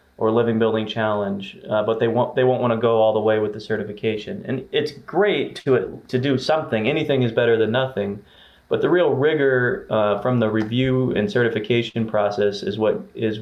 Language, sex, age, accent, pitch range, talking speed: English, male, 30-49, American, 105-120 Hz, 200 wpm